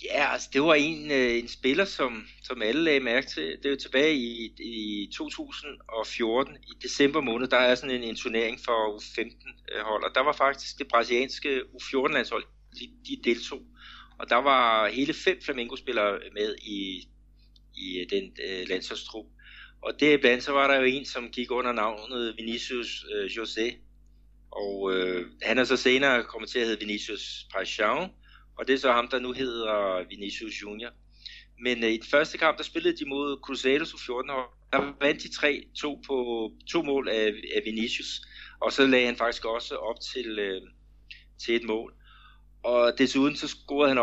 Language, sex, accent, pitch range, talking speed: Danish, male, native, 110-140 Hz, 175 wpm